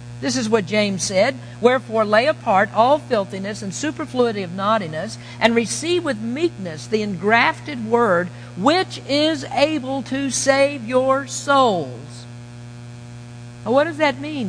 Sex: female